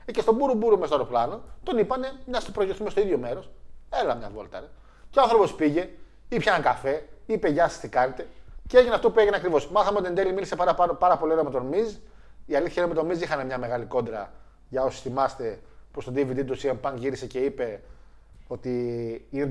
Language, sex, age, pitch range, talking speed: Greek, male, 20-39, 130-180 Hz, 235 wpm